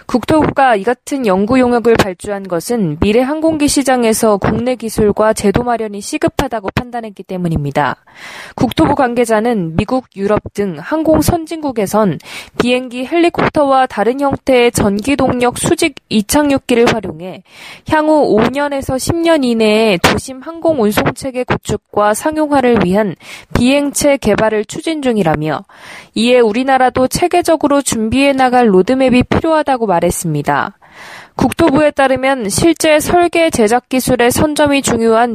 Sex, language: female, Korean